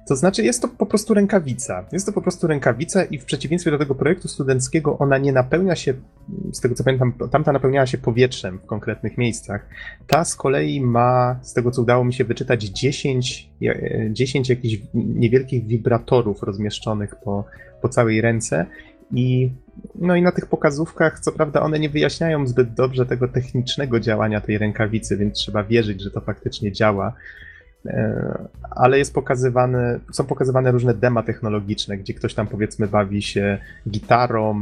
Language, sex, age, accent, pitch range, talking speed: Polish, male, 30-49, native, 105-130 Hz, 165 wpm